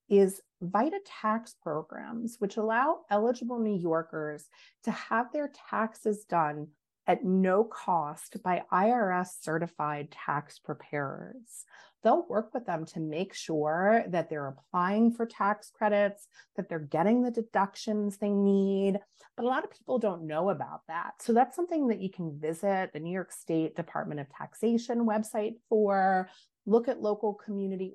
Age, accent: 30-49, American